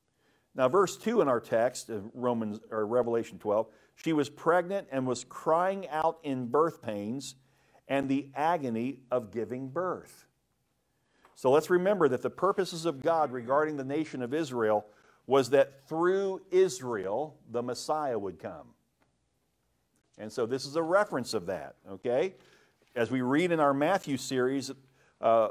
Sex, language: male, English